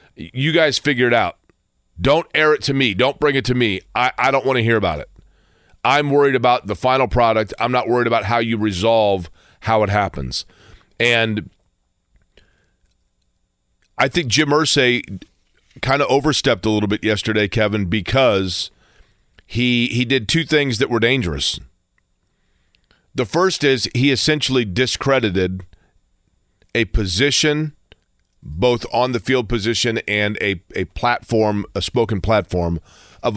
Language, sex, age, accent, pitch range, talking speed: English, male, 40-59, American, 105-130 Hz, 145 wpm